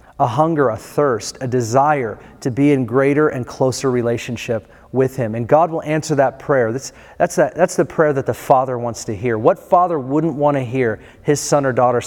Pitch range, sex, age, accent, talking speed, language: 120-145 Hz, male, 40-59, American, 215 wpm, English